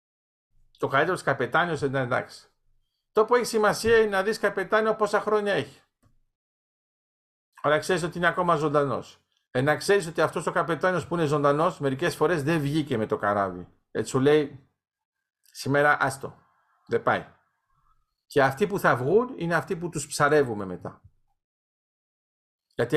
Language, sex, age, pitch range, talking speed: Greek, male, 50-69, 130-180 Hz, 155 wpm